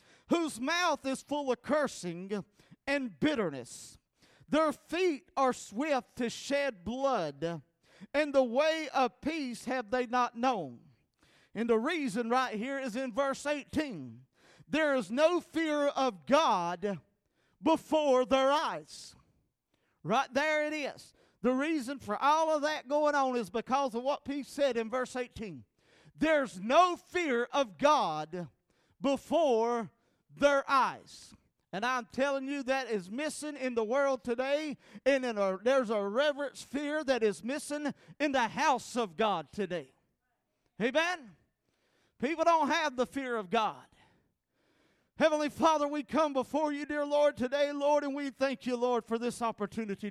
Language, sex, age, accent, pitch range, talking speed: English, male, 40-59, American, 230-295 Hz, 150 wpm